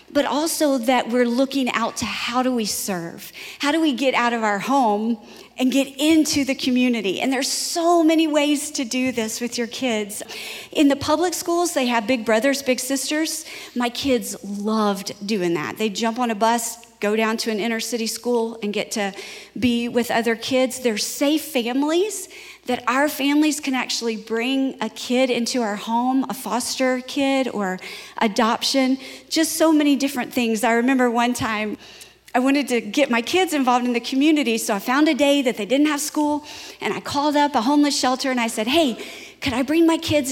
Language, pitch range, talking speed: English, 230-280 Hz, 200 wpm